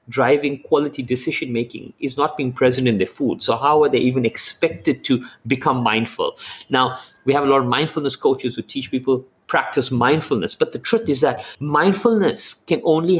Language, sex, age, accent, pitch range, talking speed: English, male, 50-69, Indian, 125-165 Hz, 180 wpm